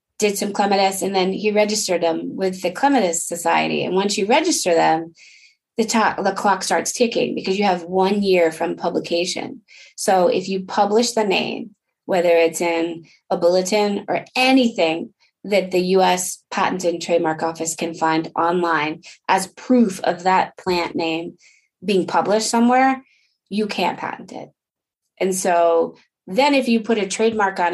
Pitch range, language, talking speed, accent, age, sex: 175-235 Hz, English, 160 wpm, American, 20-39, female